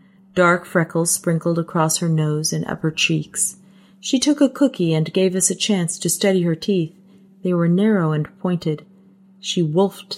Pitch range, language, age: 170-205 Hz, English, 40-59